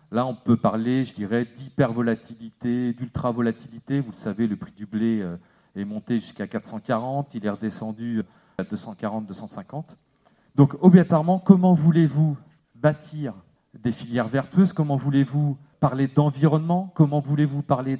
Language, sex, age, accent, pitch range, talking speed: French, male, 40-59, French, 120-155 Hz, 135 wpm